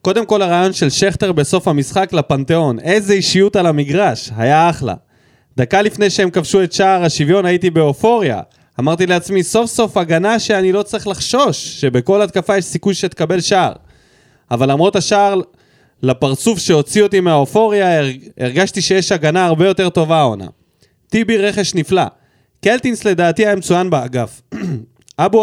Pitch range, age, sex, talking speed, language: 130-195 Hz, 20-39, male, 145 wpm, Hebrew